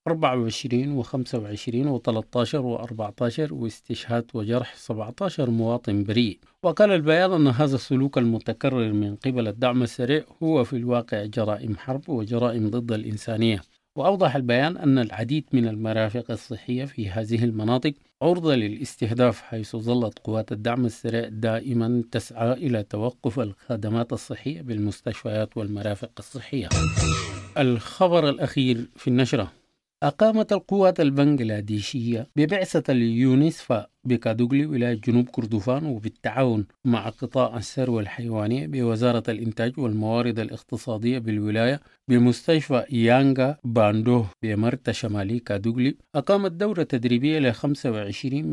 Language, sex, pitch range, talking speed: English, male, 110-130 Hz, 110 wpm